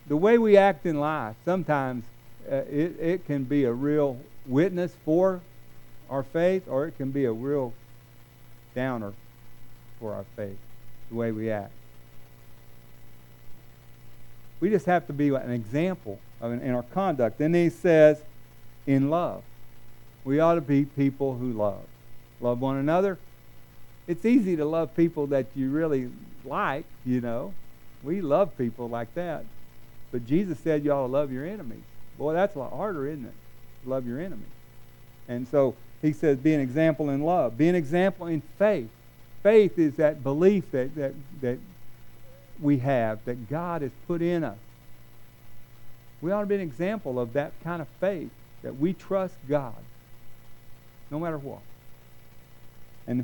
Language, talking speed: English, 160 wpm